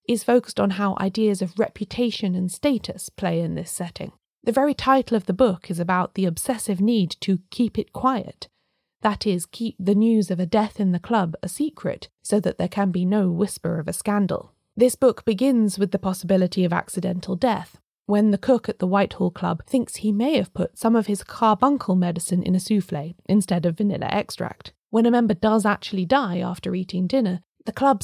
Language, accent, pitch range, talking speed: English, British, 185-230 Hz, 200 wpm